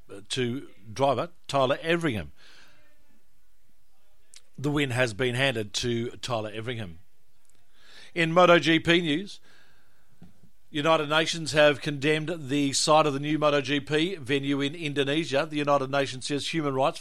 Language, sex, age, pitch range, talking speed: English, male, 50-69, 130-155 Hz, 120 wpm